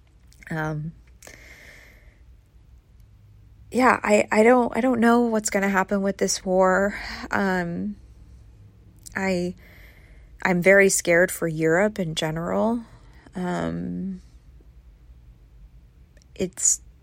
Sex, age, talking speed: female, 20-39, 90 wpm